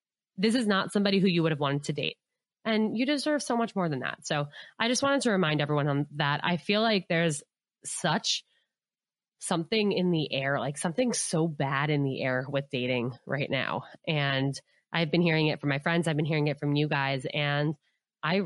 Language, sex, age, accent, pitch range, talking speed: English, female, 20-39, American, 145-185 Hz, 210 wpm